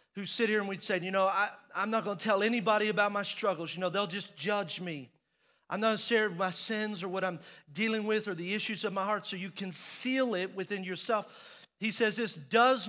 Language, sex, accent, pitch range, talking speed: English, male, American, 190-230 Hz, 235 wpm